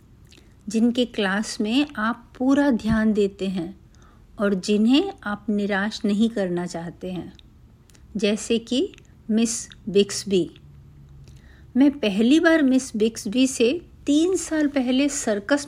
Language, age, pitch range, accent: Hindi, 50-69, 190-255 Hz, native